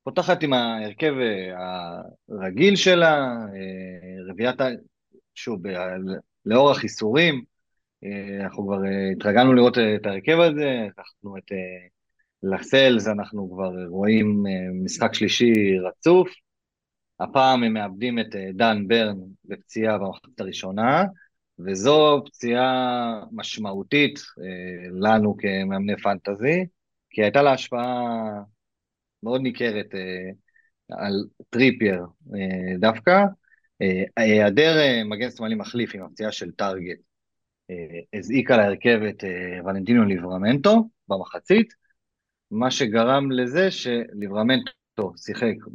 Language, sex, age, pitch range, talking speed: Hebrew, male, 30-49, 95-130 Hz, 100 wpm